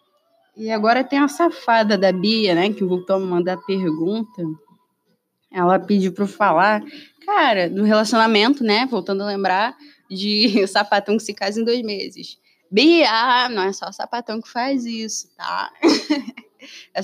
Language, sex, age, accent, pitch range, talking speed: Portuguese, female, 20-39, Brazilian, 195-245 Hz, 160 wpm